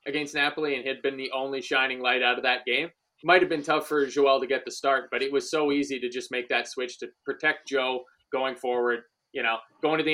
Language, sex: English, male